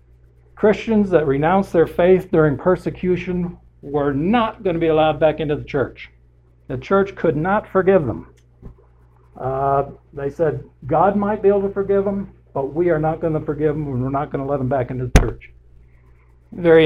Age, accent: 60-79, American